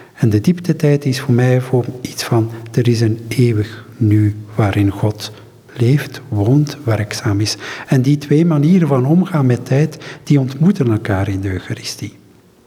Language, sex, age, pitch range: Dutch, male, 50-69, 120-150 Hz